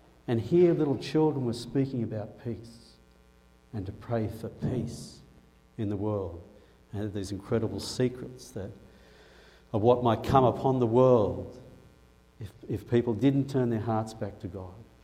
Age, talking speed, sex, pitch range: 60-79, 160 wpm, male, 90-130 Hz